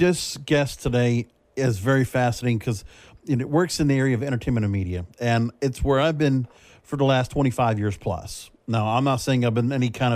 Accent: American